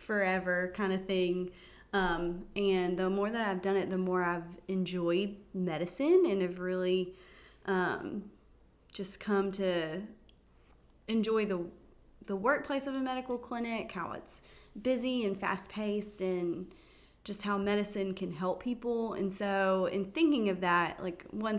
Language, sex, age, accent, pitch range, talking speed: English, female, 20-39, American, 180-205 Hz, 145 wpm